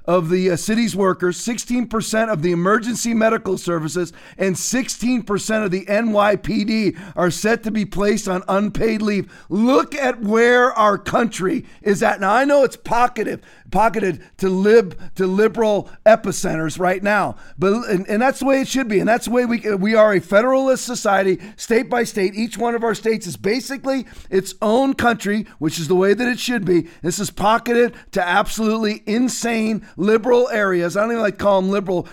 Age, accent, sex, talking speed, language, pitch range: 40-59, American, male, 185 wpm, English, 195-240 Hz